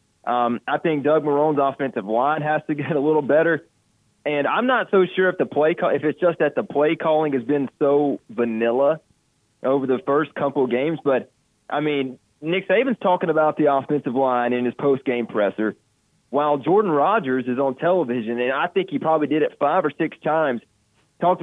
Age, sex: 30-49, male